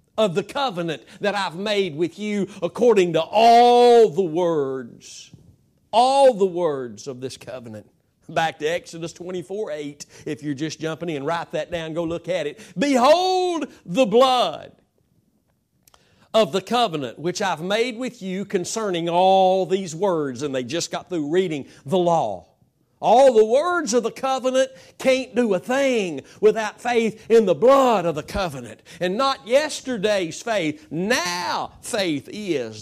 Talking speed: 155 wpm